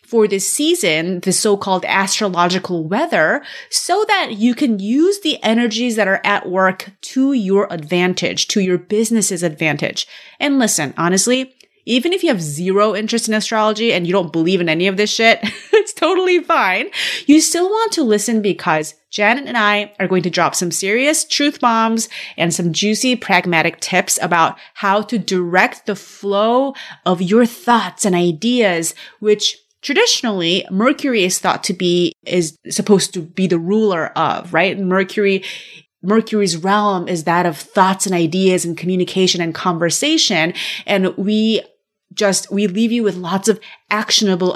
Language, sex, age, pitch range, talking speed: English, female, 30-49, 180-230 Hz, 160 wpm